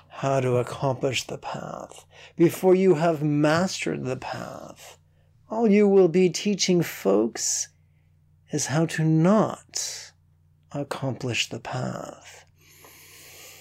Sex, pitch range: male, 110-160 Hz